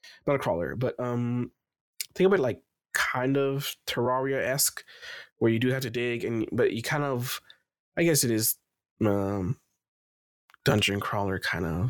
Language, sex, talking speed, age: English, male, 155 wpm, 20-39